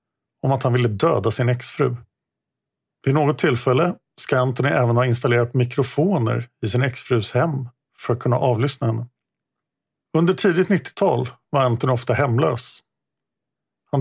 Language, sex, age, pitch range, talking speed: Swedish, male, 50-69, 120-145 Hz, 140 wpm